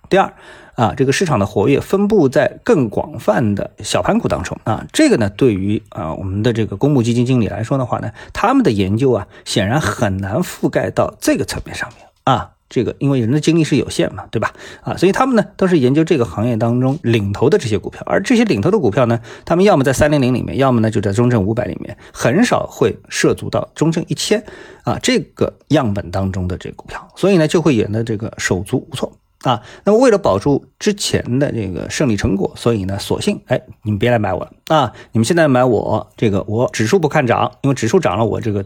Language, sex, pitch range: Chinese, male, 105-150 Hz